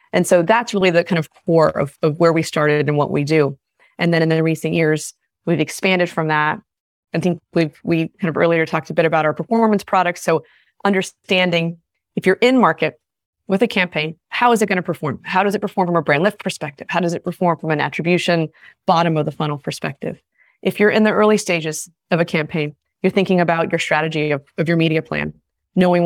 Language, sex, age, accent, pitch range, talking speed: English, female, 20-39, American, 160-190 Hz, 225 wpm